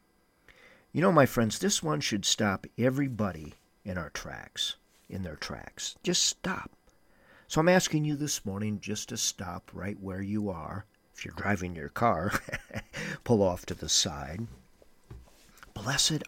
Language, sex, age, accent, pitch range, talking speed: English, male, 50-69, American, 105-155 Hz, 150 wpm